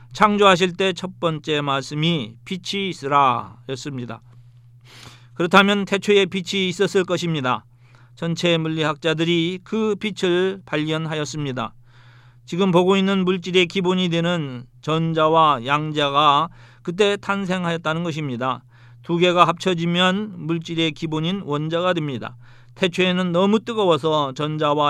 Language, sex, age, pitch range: Korean, male, 40-59, 135-180 Hz